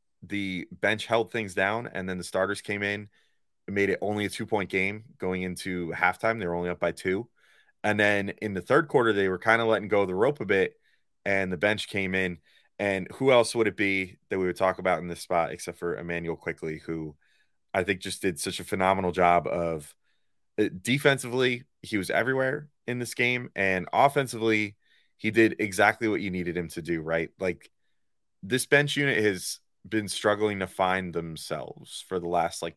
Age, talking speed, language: 30-49, 200 wpm, English